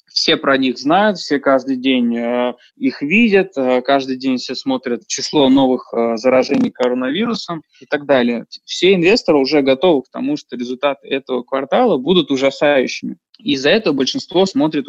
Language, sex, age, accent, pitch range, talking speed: Russian, male, 20-39, native, 130-185 Hz, 150 wpm